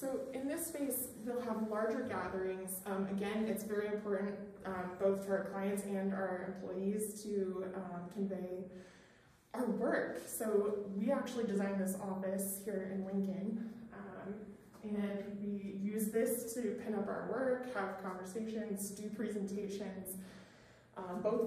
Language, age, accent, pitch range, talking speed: English, 20-39, American, 195-230 Hz, 145 wpm